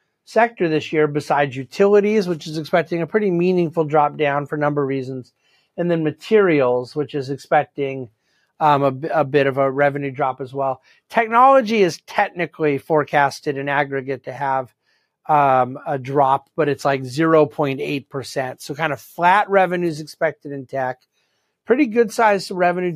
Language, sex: English, male